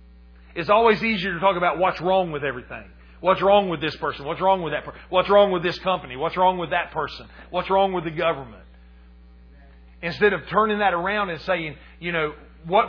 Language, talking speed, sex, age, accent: English, 210 wpm, male, 40-59, American